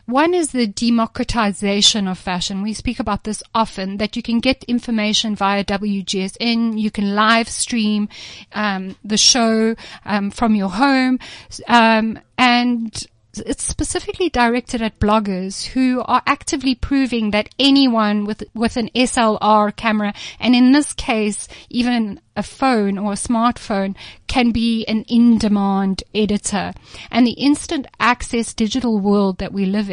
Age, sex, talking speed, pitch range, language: 30-49, female, 140 wpm, 210-250 Hz, English